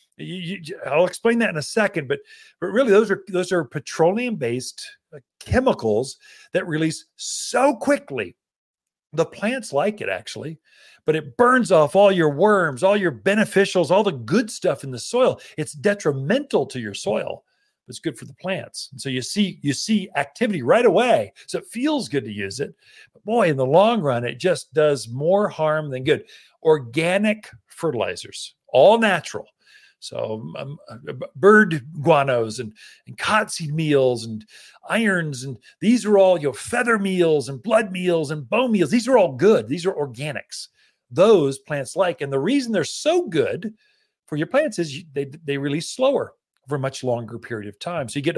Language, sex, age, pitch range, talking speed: English, male, 50-69, 140-215 Hz, 180 wpm